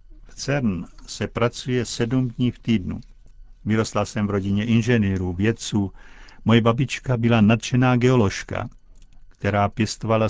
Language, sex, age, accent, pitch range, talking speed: Czech, male, 50-69, native, 100-120 Hz, 115 wpm